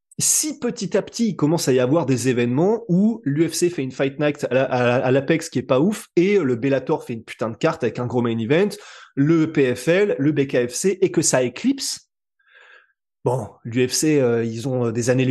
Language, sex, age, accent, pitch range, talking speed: French, male, 20-39, French, 130-175 Hz, 200 wpm